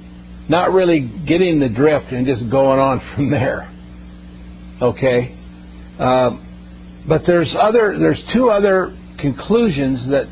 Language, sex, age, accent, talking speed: English, male, 50-69, American, 115 wpm